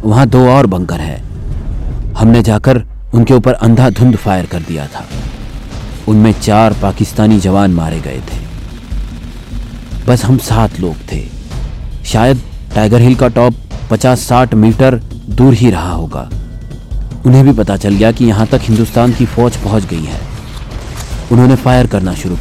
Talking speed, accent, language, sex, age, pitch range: 145 wpm, native, Hindi, male, 40-59, 100-125 Hz